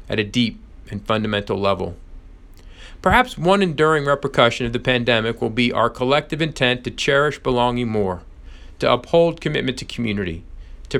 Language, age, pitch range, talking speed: English, 40-59, 95-135 Hz, 155 wpm